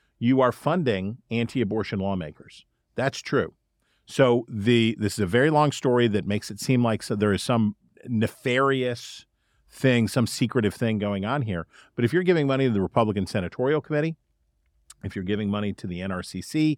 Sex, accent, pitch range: male, American, 100-125 Hz